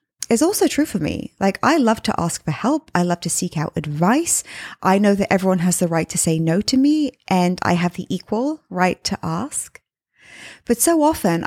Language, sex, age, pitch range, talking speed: English, female, 20-39, 165-215 Hz, 215 wpm